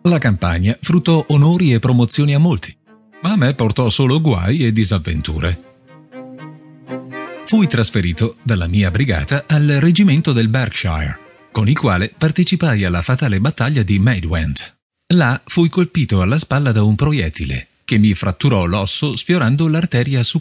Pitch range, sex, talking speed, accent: 100-155 Hz, male, 145 wpm, native